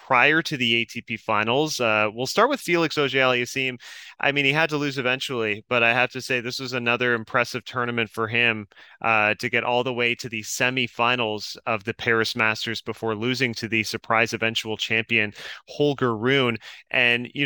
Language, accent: English, American